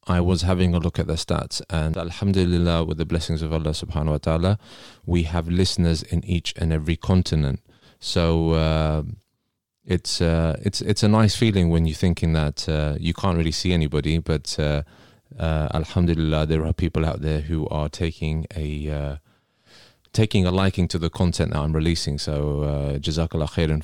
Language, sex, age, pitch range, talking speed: English, male, 30-49, 80-95 Hz, 185 wpm